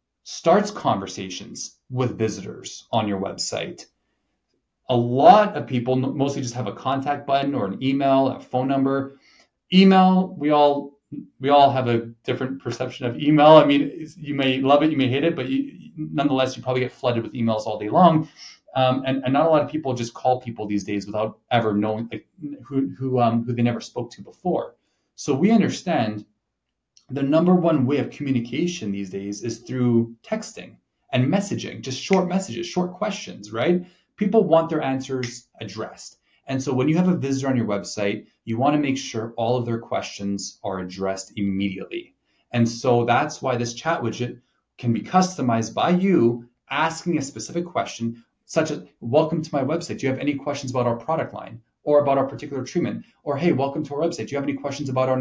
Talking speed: 195 wpm